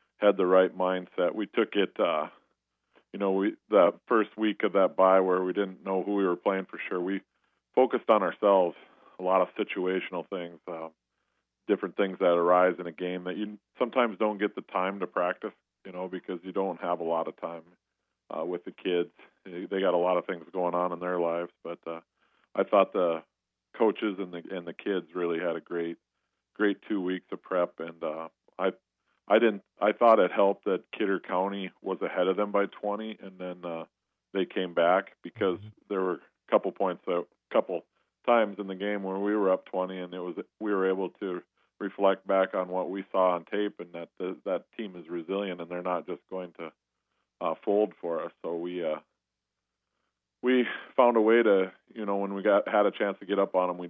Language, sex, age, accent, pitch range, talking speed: English, male, 40-59, American, 85-100 Hz, 215 wpm